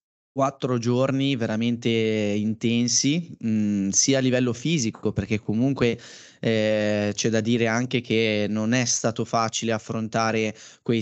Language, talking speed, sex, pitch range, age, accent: Italian, 120 wpm, male, 110-125 Hz, 20-39, native